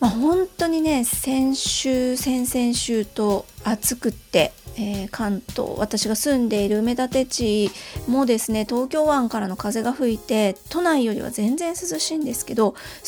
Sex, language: female, Japanese